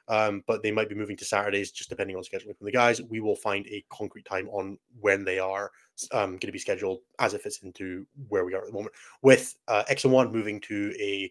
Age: 20-39